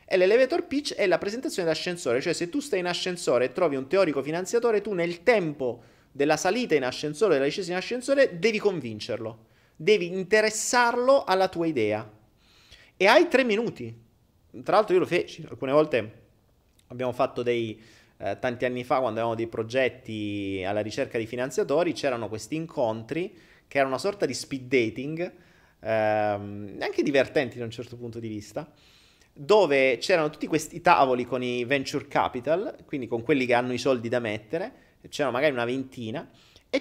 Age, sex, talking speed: 30-49, male, 170 wpm